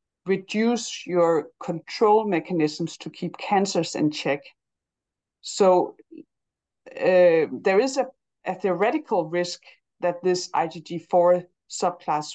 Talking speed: 100 wpm